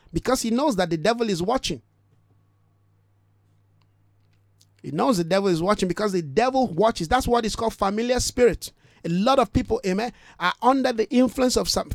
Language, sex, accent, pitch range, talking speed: English, male, Nigerian, 175-235 Hz, 175 wpm